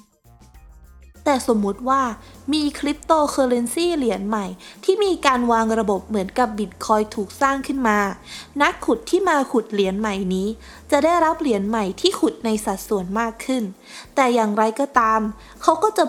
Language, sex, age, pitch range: Thai, female, 20-39, 210-290 Hz